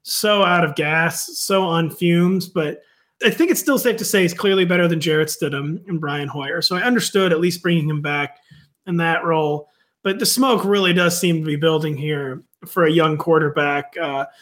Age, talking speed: 30-49, 210 wpm